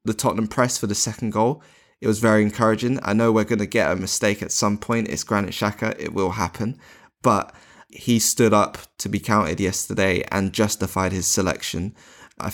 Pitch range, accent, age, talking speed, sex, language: 95-115 Hz, British, 20-39, 195 wpm, male, English